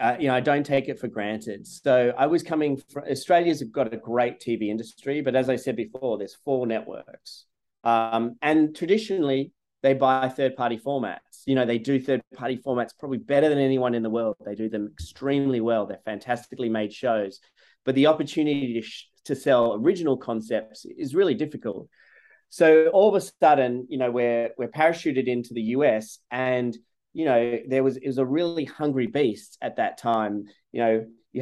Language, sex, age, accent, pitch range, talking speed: English, male, 30-49, Australian, 115-140 Hz, 190 wpm